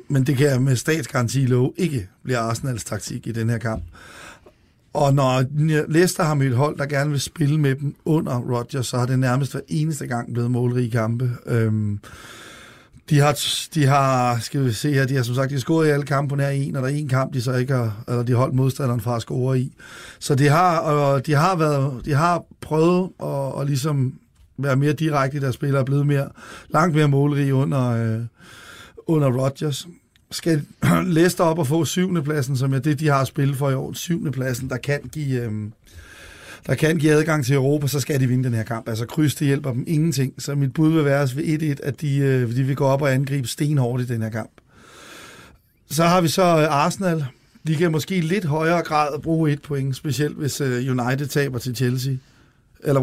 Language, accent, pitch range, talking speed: Danish, native, 125-150 Hz, 200 wpm